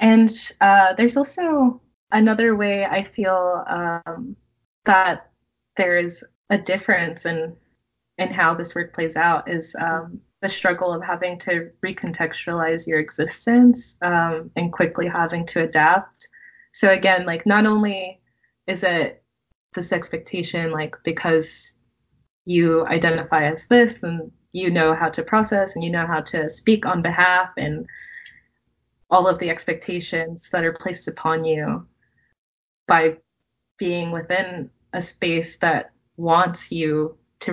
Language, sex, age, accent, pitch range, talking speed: English, female, 20-39, American, 160-185 Hz, 135 wpm